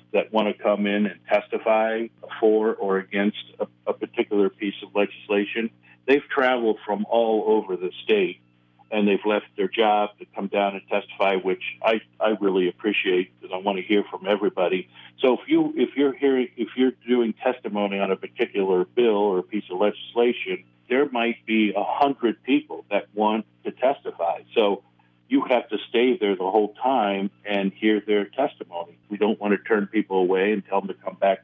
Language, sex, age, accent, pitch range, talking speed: English, male, 50-69, American, 95-110 Hz, 190 wpm